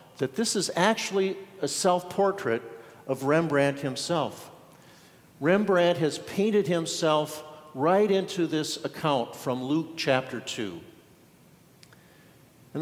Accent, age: American, 50-69